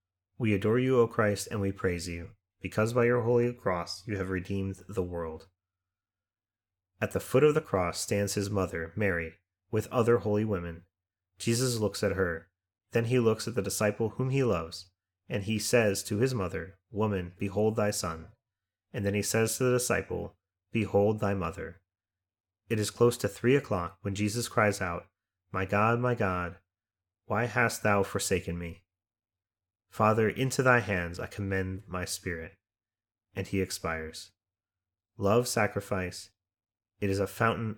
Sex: male